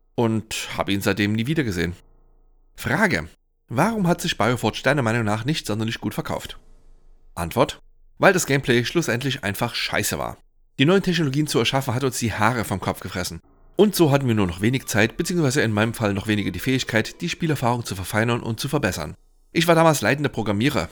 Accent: German